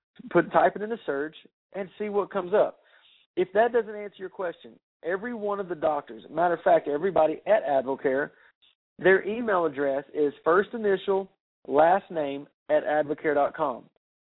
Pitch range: 150-195 Hz